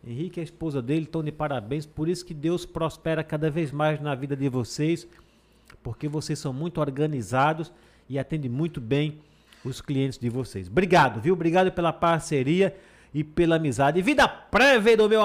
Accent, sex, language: Brazilian, male, Portuguese